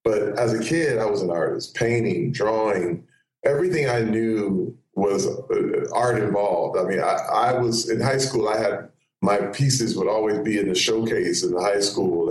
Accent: American